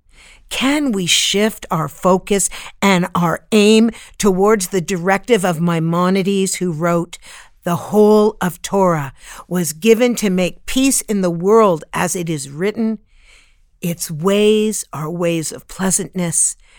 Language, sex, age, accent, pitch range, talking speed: English, female, 50-69, American, 175-230 Hz, 130 wpm